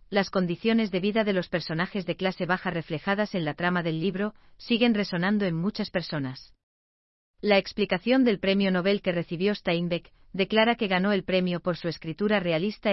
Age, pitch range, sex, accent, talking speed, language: 40-59, 170-210 Hz, female, Spanish, 175 wpm, Spanish